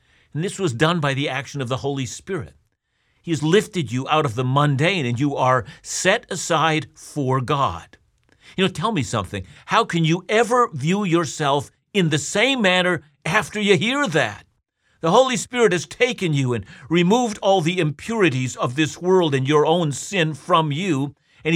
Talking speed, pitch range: 185 wpm, 130-190 Hz